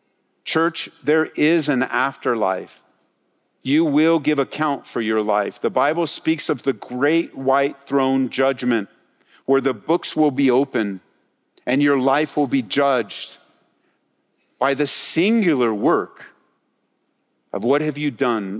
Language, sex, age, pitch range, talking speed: English, male, 50-69, 135-190 Hz, 135 wpm